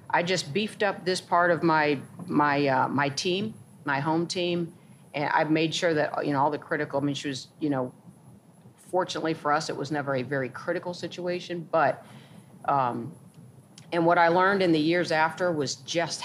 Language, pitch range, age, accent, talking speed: English, 140-170 Hz, 40-59, American, 195 wpm